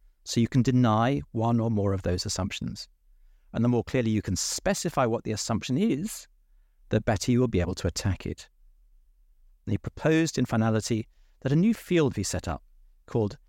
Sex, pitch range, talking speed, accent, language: male, 100-155 Hz, 190 wpm, British, English